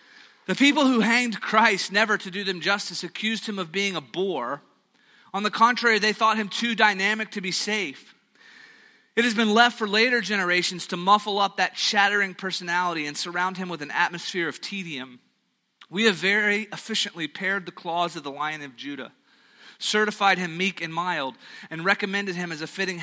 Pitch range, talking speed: 165-215 Hz, 185 wpm